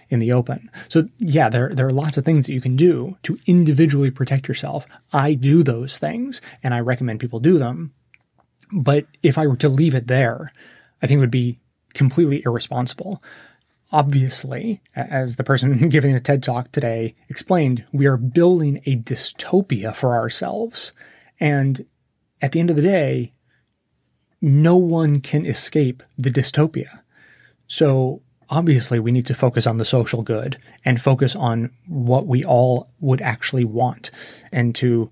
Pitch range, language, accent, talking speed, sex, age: 120-145 Hz, English, American, 160 wpm, male, 30-49